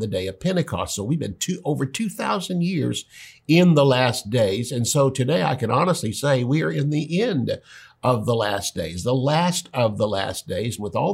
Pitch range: 110-140 Hz